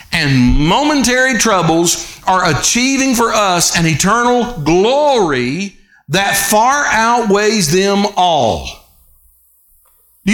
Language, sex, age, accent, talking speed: English, male, 50-69, American, 95 wpm